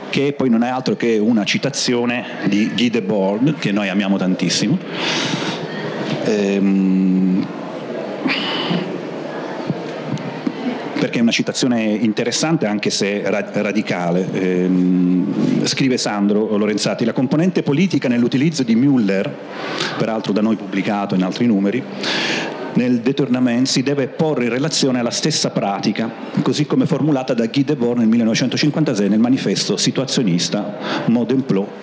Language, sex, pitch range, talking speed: Italian, male, 100-140 Hz, 120 wpm